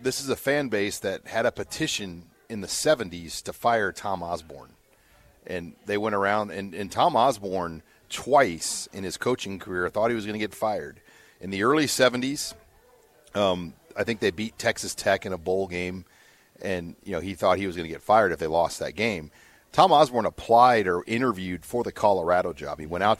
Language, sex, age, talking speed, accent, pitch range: English, male, 40-59, 200 wpm, American, 85-105 Hz